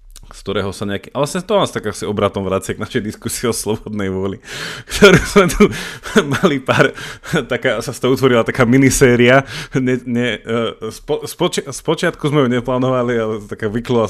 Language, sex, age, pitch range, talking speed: Slovak, male, 20-39, 95-115 Hz, 150 wpm